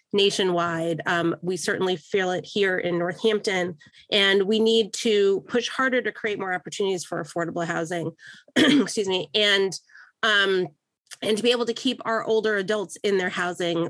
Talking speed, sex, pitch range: 165 wpm, female, 185-220 Hz